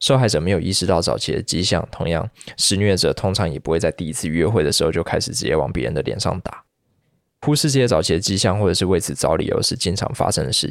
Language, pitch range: Chinese, 95-125 Hz